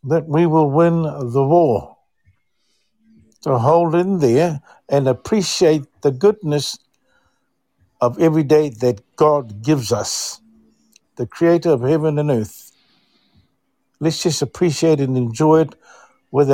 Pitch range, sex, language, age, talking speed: 130-165 Hz, male, English, 60-79, 125 wpm